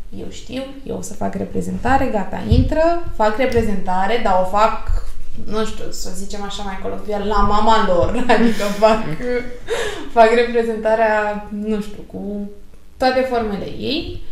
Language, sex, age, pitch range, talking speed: Romanian, female, 20-39, 200-280 Hz, 145 wpm